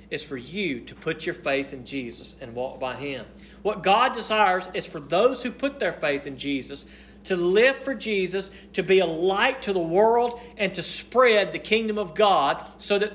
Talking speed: 205 wpm